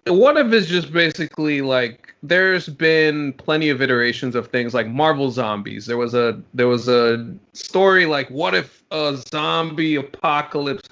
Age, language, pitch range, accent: 20-39, English, 120-150 Hz, American